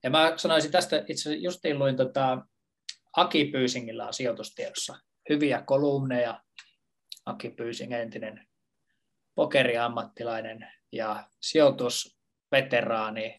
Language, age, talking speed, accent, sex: Finnish, 20-39, 95 wpm, native, male